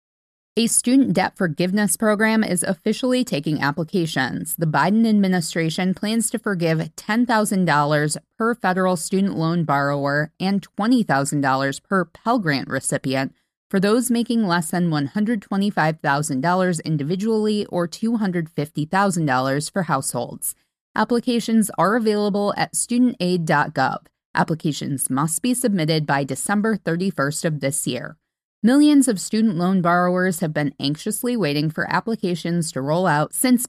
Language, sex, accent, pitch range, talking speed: English, female, American, 155-205 Hz, 120 wpm